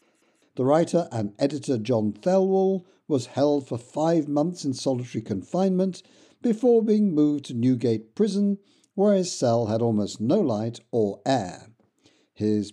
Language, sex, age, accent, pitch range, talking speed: English, male, 60-79, British, 110-165 Hz, 140 wpm